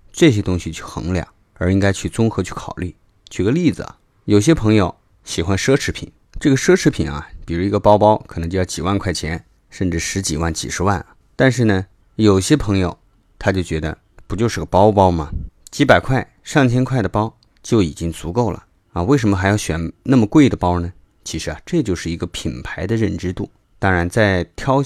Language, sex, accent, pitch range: Chinese, male, native, 85-105 Hz